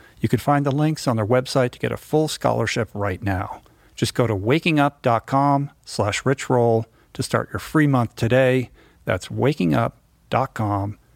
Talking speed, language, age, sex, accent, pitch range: 155 wpm, English, 50-69, male, American, 115-135 Hz